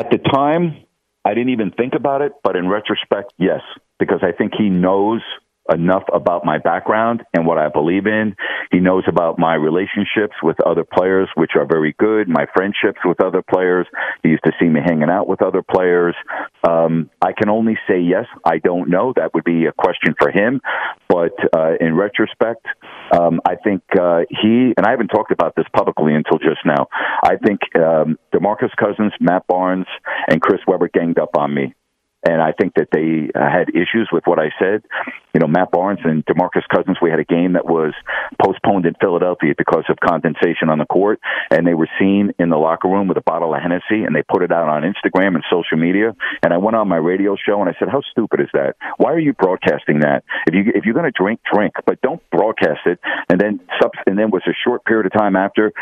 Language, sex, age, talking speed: English, male, 50-69, 215 wpm